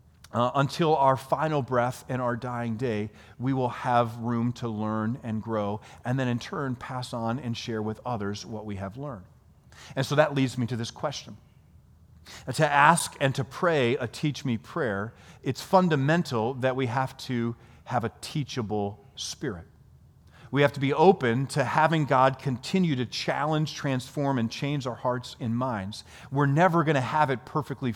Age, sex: 40-59, male